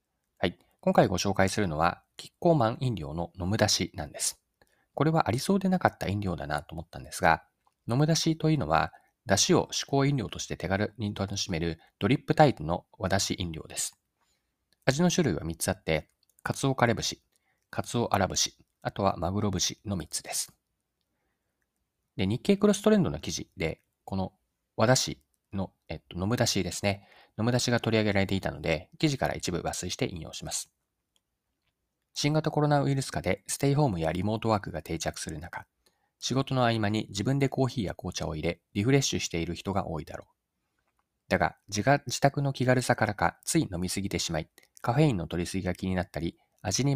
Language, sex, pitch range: Japanese, male, 90-135 Hz